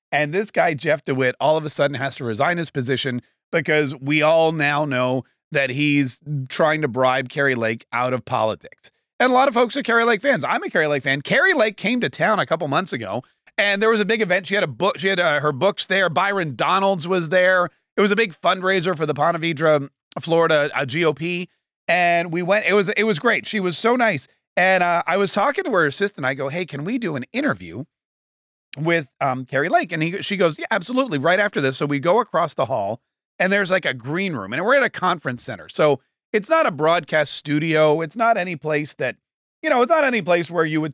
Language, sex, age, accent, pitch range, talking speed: English, male, 30-49, American, 135-185 Hz, 235 wpm